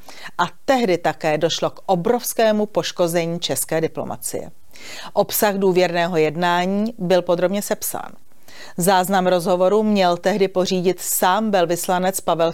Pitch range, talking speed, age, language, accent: 175-200 Hz, 110 wpm, 40-59, Czech, native